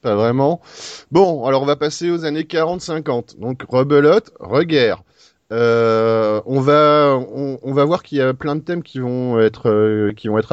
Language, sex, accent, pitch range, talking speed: French, male, French, 105-135 Hz, 190 wpm